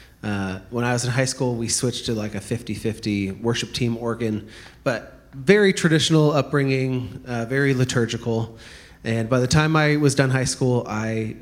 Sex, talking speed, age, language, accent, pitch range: male, 175 wpm, 30-49, English, American, 110-135 Hz